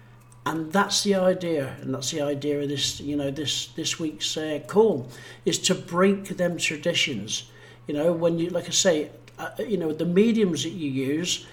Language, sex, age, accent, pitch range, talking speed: English, male, 60-79, British, 145-195 Hz, 195 wpm